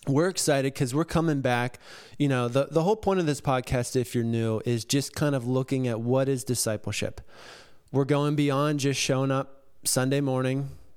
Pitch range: 120-140 Hz